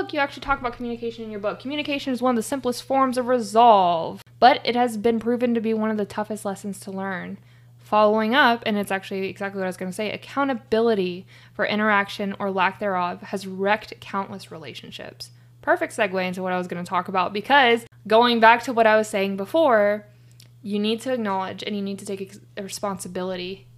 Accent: American